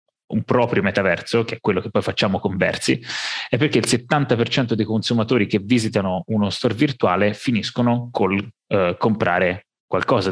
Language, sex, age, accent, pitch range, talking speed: Italian, male, 20-39, native, 100-120 Hz, 155 wpm